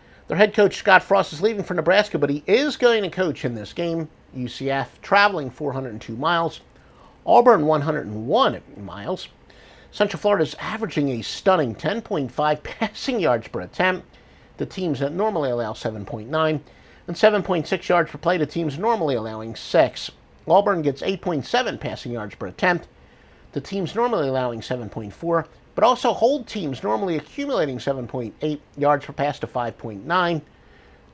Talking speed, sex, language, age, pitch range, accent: 145 wpm, male, English, 50-69, 135-190 Hz, American